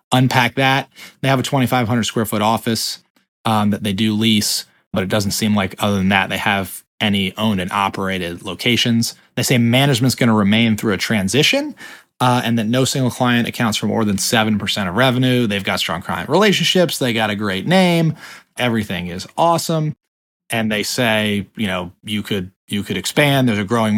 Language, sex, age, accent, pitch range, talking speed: English, male, 30-49, American, 100-130 Hz, 200 wpm